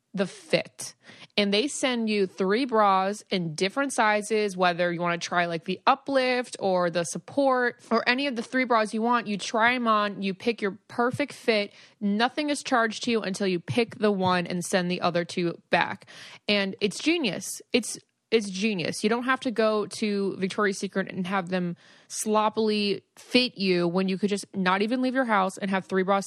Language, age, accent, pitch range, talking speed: English, 20-39, American, 190-235 Hz, 200 wpm